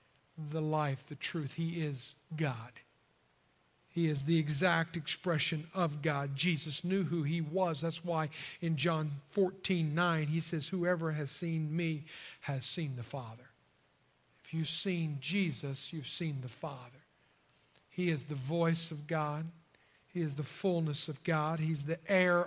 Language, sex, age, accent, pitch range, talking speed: English, male, 50-69, American, 150-195 Hz, 155 wpm